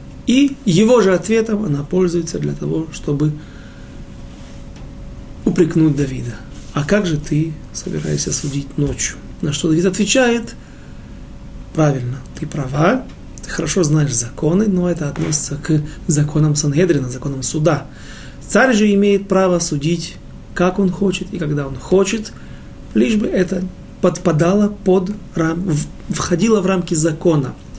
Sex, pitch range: male, 145-185 Hz